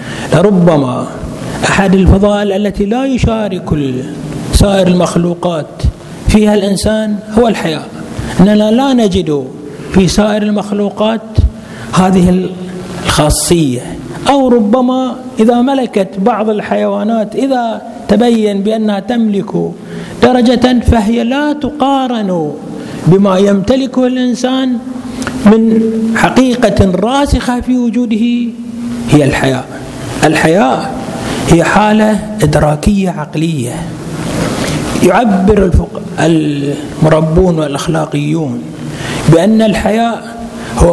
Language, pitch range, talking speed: Arabic, 170-225 Hz, 80 wpm